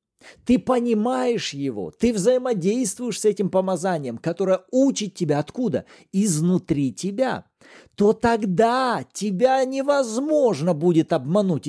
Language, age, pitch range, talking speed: Russian, 40-59, 185-255 Hz, 105 wpm